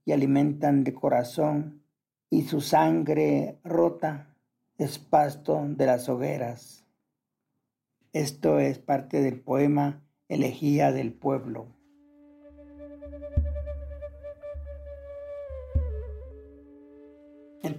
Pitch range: 120-155 Hz